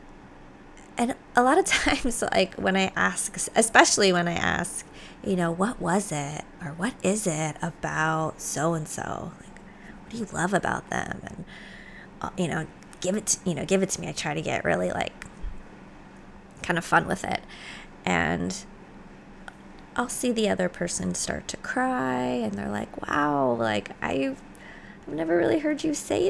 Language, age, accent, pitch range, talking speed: English, 20-39, American, 165-220 Hz, 170 wpm